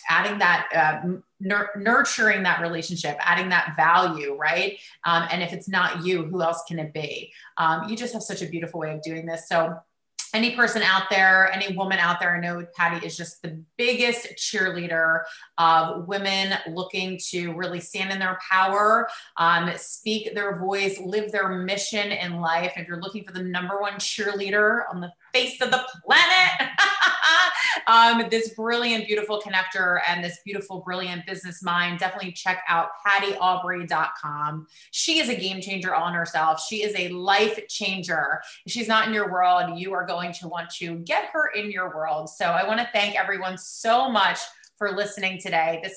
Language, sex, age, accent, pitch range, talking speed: English, female, 30-49, American, 170-205 Hz, 180 wpm